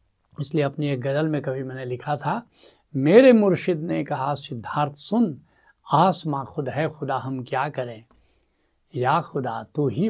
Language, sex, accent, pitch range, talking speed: Hindi, male, native, 135-195 Hz, 155 wpm